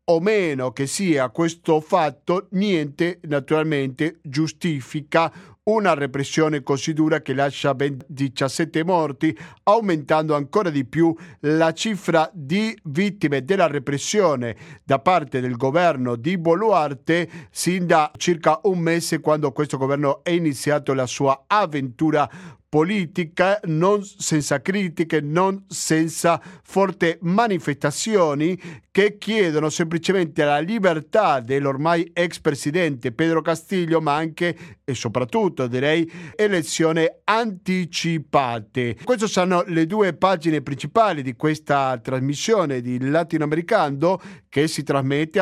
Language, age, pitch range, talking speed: Italian, 50-69, 140-175 Hz, 115 wpm